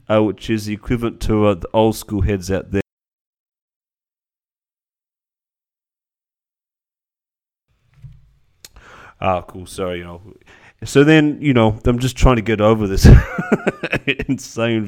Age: 30-49